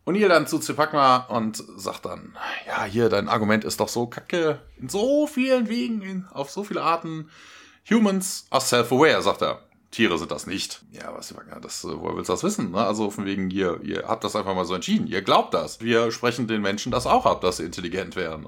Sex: male